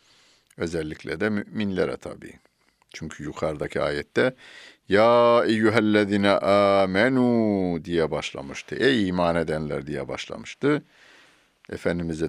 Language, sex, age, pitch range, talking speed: Turkish, male, 60-79, 80-105 Hz, 90 wpm